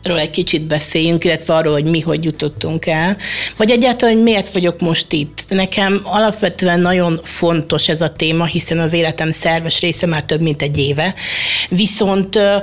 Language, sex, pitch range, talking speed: Hungarian, female, 165-205 Hz, 170 wpm